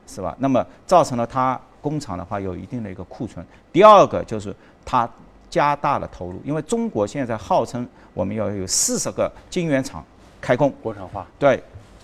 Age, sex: 50-69, male